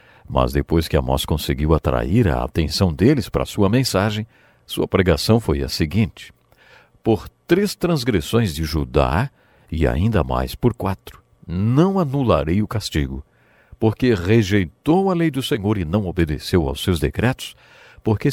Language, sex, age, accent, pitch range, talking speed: English, male, 60-79, Brazilian, 75-125 Hz, 145 wpm